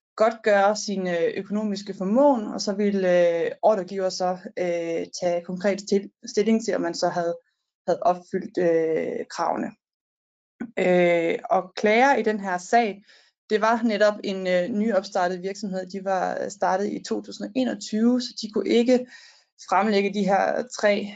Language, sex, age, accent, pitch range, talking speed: Danish, female, 20-39, native, 185-235 Hz, 150 wpm